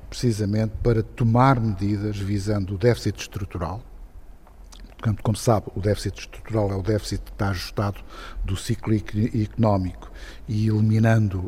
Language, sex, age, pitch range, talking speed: Portuguese, male, 50-69, 100-125 Hz, 135 wpm